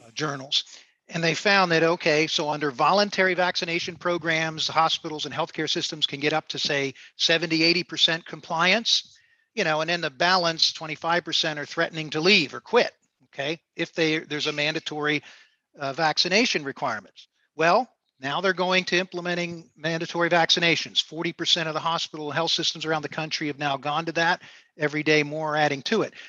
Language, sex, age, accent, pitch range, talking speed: English, male, 50-69, American, 150-175 Hz, 165 wpm